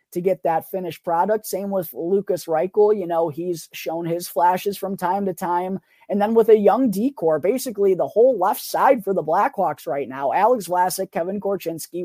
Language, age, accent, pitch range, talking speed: English, 20-39, American, 155-200 Hz, 195 wpm